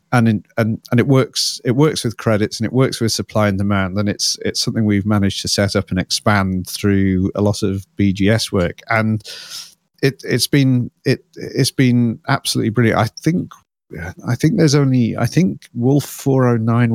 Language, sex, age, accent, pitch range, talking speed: English, male, 40-59, British, 100-120 Hz, 190 wpm